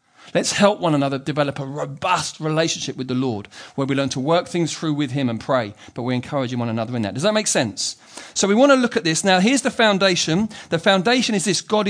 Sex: male